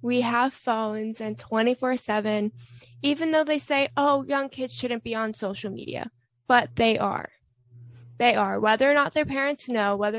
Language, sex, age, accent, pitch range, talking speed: English, female, 20-39, American, 195-245 Hz, 170 wpm